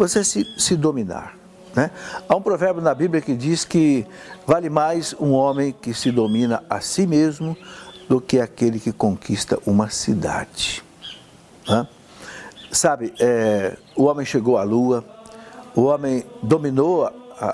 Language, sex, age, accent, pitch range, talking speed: Portuguese, male, 60-79, Brazilian, 125-200 Hz, 140 wpm